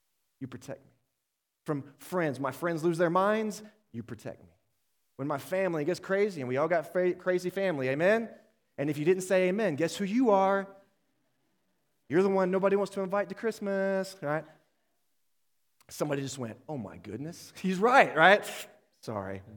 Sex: male